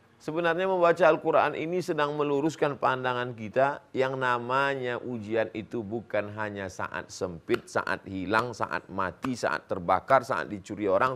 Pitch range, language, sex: 110-145 Hz, Indonesian, male